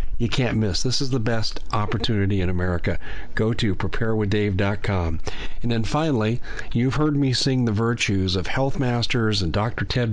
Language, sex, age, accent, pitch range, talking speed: English, male, 40-59, American, 100-125 Hz, 165 wpm